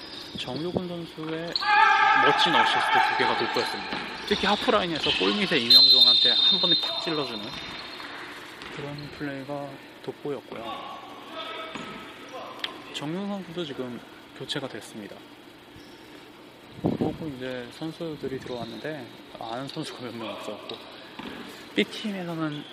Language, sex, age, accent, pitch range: Korean, male, 20-39, native, 135-210 Hz